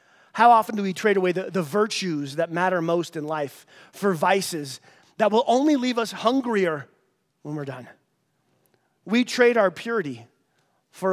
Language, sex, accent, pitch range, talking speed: English, male, American, 155-215 Hz, 160 wpm